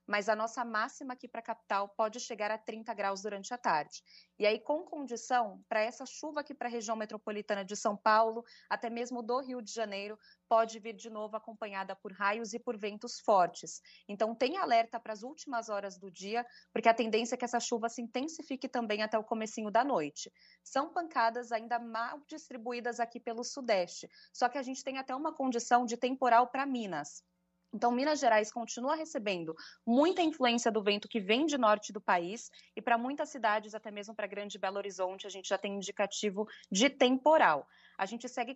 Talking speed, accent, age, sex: 195 wpm, Brazilian, 20-39, female